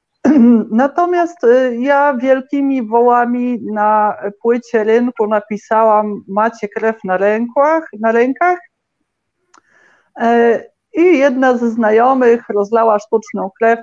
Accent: native